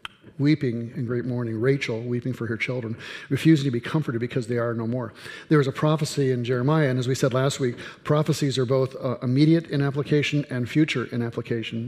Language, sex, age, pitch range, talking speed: English, male, 50-69, 120-140 Hz, 205 wpm